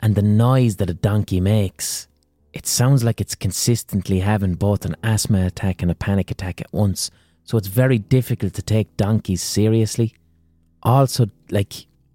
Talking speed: 165 wpm